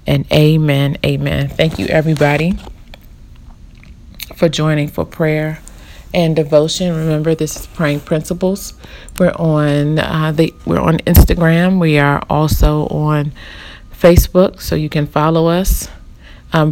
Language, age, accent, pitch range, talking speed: English, 40-59, American, 145-160 Hz, 125 wpm